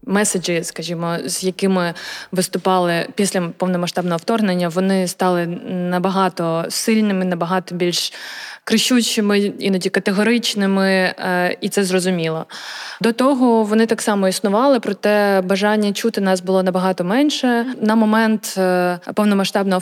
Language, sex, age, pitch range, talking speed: Ukrainian, female, 20-39, 180-215 Hz, 110 wpm